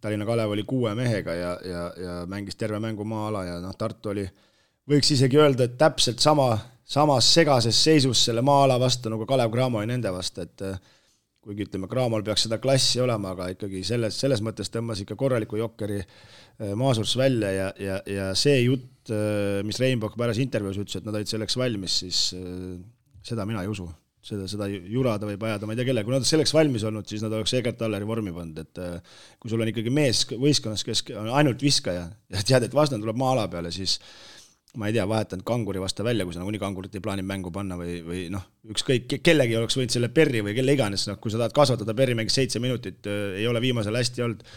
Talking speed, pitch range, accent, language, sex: 210 wpm, 100-130 Hz, Finnish, English, male